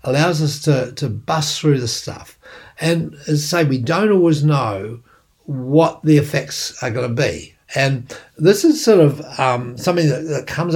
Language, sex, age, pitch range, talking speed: English, male, 60-79, 125-160 Hz, 185 wpm